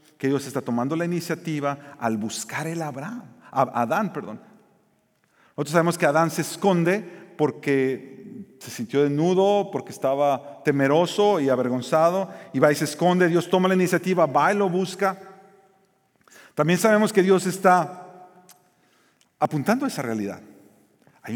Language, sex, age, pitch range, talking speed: Spanish, male, 40-59, 135-185 Hz, 140 wpm